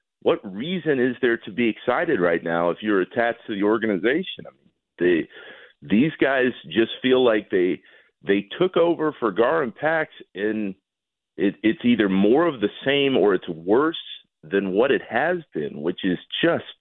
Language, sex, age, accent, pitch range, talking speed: English, male, 50-69, American, 90-150 Hz, 180 wpm